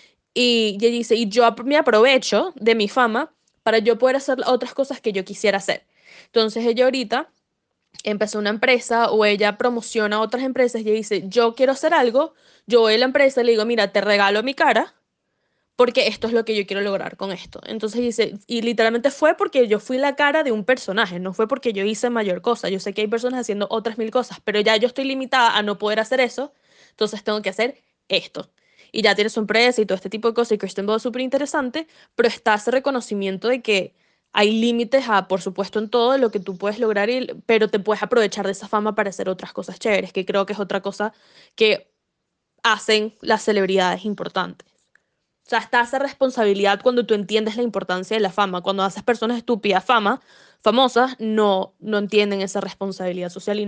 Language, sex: Spanish, female